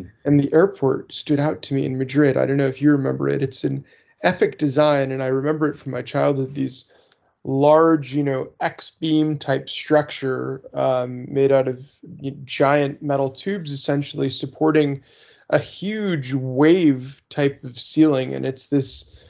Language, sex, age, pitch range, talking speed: English, male, 20-39, 130-145 Hz, 160 wpm